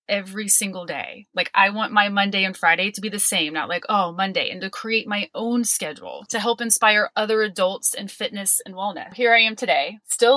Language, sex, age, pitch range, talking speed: English, female, 20-39, 185-230 Hz, 220 wpm